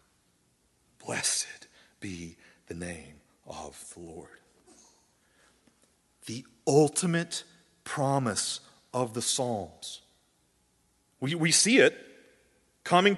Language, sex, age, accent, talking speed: English, male, 40-59, American, 80 wpm